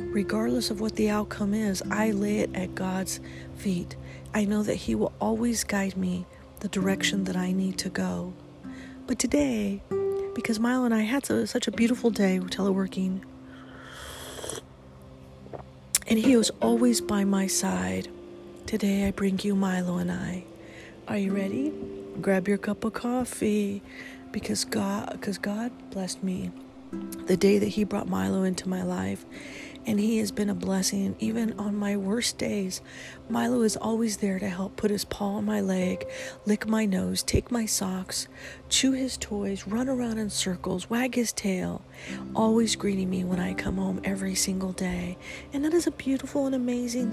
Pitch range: 180-220 Hz